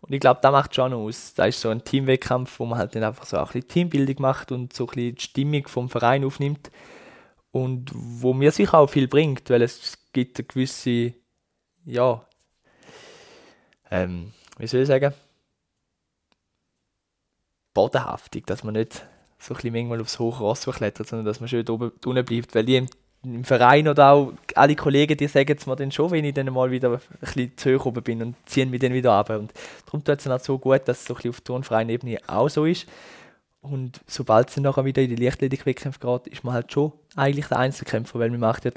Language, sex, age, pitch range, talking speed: German, male, 20-39, 120-140 Hz, 205 wpm